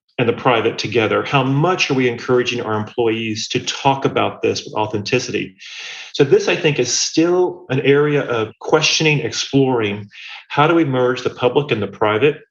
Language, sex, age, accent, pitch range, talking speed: English, male, 40-59, American, 110-145 Hz, 175 wpm